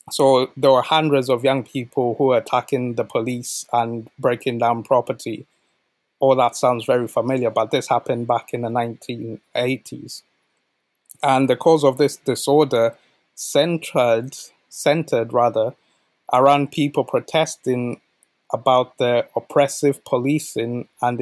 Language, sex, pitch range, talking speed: English, male, 120-135 Hz, 125 wpm